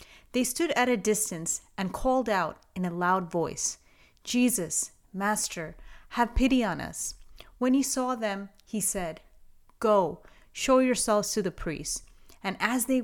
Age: 30-49